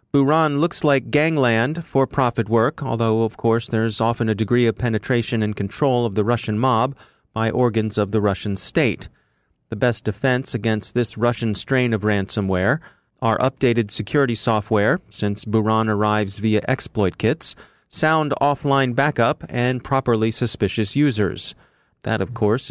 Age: 30-49